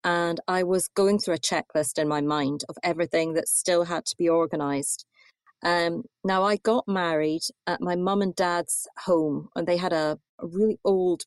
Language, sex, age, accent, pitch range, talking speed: English, female, 40-59, British, 165-215 Hz, 190 wpm